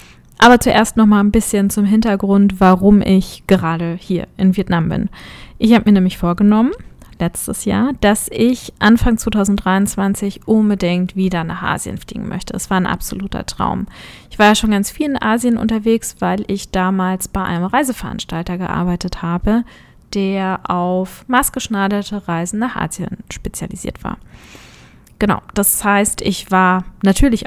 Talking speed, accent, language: 150 wpm, German, German